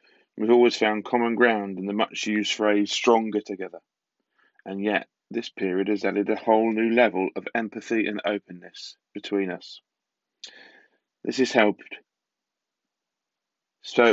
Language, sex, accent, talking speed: English, male, British, 130 wpm